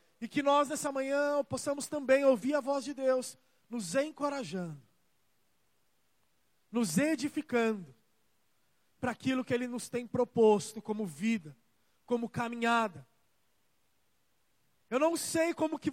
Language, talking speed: Portuguese, 120 wpm